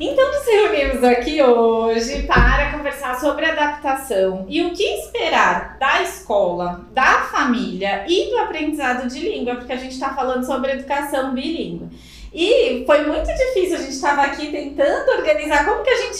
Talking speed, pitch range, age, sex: 165 wpm, 230-315 Hz, 20-39, female